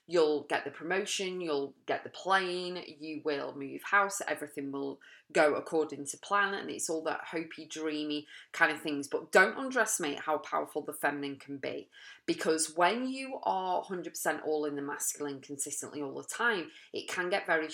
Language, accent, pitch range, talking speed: English, British, 145-185 Hz, 180 wpm